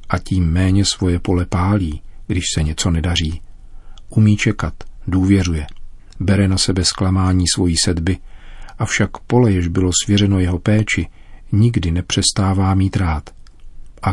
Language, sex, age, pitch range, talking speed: Czech, male, 40-59, 85-100 Hz, 130 wpm